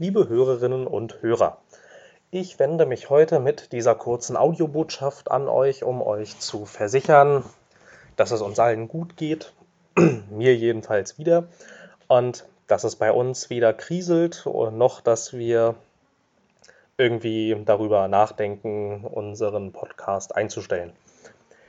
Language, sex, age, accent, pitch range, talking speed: German, male, 20-39, German, 125-170 Hz, 120 wpm